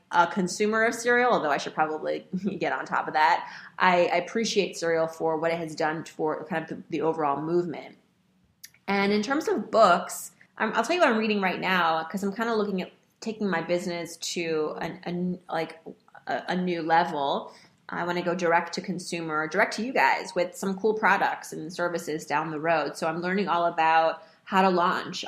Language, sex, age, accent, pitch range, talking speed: English, female, 30-49, American, 160-195 Hz, 200 wpm